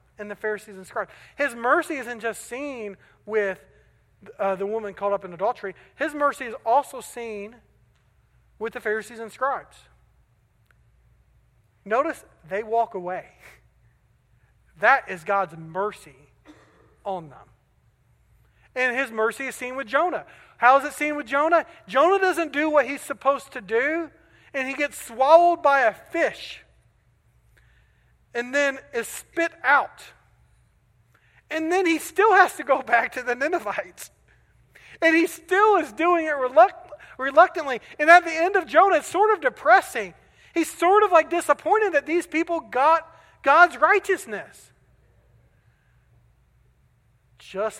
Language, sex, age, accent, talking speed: English, male, 40-59, American, 140 wpm